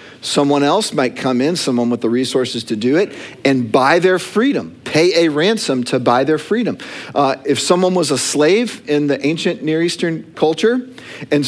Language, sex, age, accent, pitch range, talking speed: English, male, 50-69, American, 115-165 Hz, 190 wpm